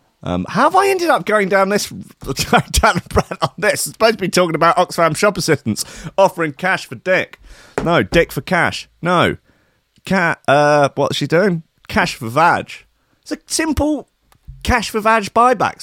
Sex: male